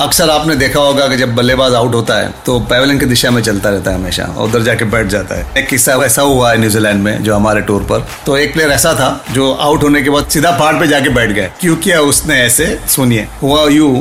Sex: male